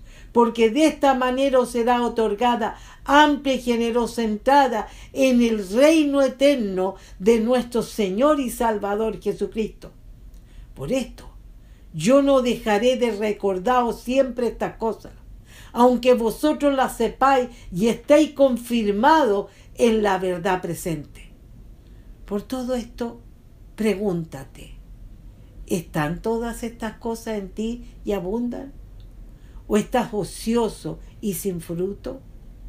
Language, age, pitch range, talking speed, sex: English, 60-79, 200-250 Hz, 110 wpm, female